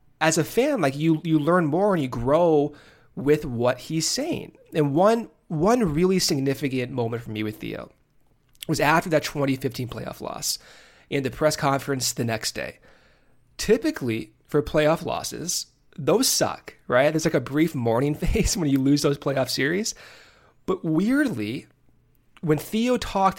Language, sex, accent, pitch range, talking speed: English, male, American, 130-165 Hz, 160 wpm